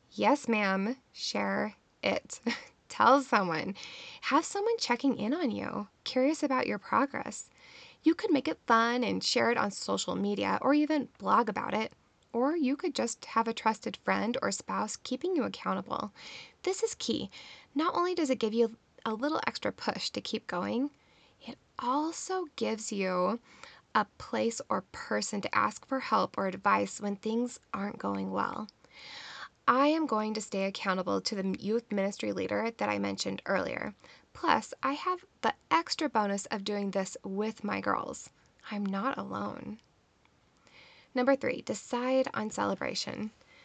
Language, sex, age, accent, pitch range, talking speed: English, female, 10-29, American, 210-280 Hz, 160 wpm